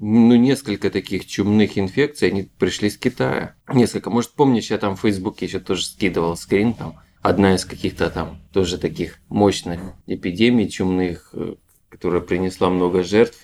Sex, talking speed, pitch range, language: male, 150 wpm, 90-110 Hz, Russian